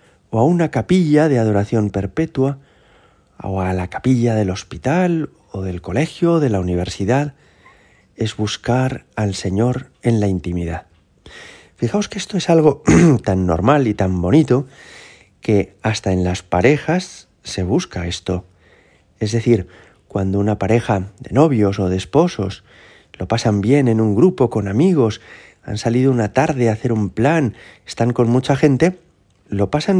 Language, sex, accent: Spanish, male, Spanish